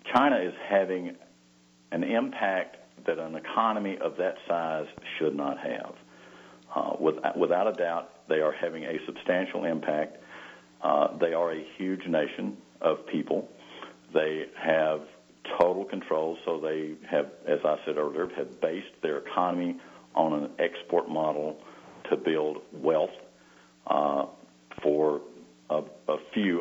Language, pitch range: English, 75-85 Hz